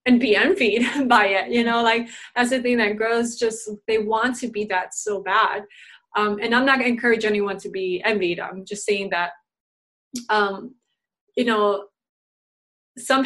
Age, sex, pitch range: 20-39, female, 205-240 Hz